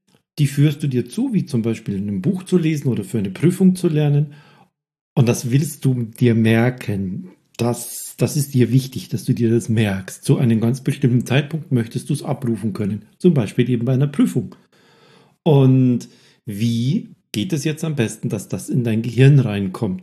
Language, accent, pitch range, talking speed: German, German, 110-145 Hz, 190 wpm